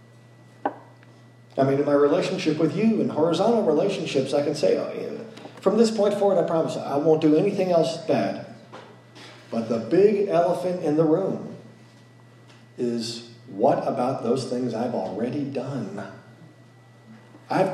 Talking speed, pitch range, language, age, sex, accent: 140 wpm, 120-170 Hz, English, 40-59, male, American